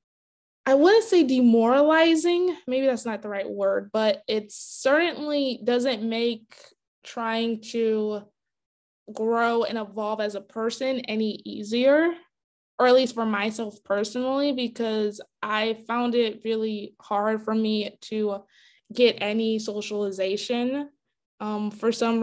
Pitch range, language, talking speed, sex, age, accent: 210-255 Hz, English, 125 wpm, female, 20-39, American